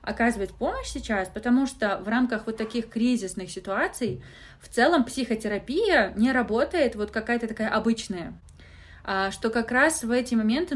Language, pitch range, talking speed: Russian, 195-245 Hz, 145 wpm